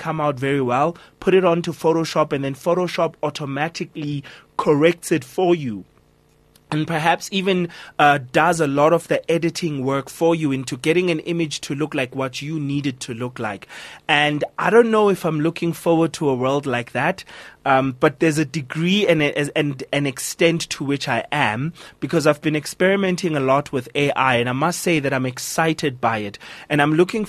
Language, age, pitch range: English, 30-49, 130-165 Hz